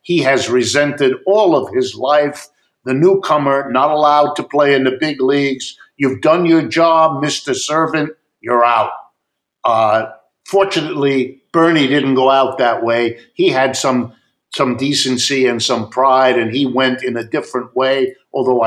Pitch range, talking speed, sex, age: 125-155 Hz, 160 wpm, male, 50-69